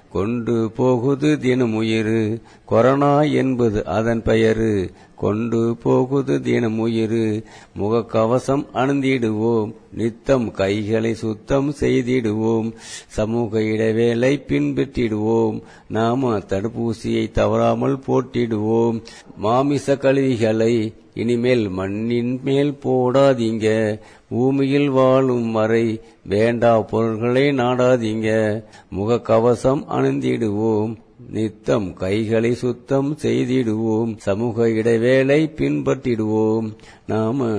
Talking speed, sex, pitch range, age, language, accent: 85 wpm, male, 110-125 Hz, 50-69, English, Indian